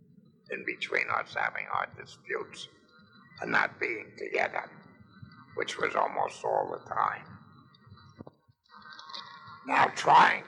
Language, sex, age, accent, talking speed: English, male, 60-79, American, 105 wpm